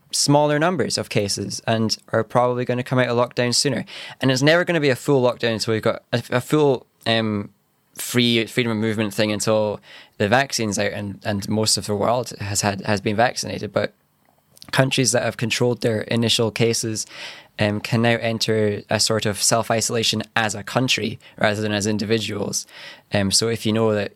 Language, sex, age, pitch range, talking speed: English, male, 10-29, 105-120 Hz, 200 wpm